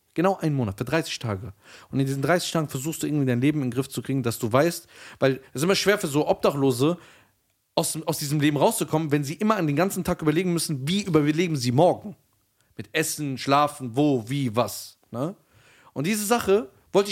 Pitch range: 110-170 Hz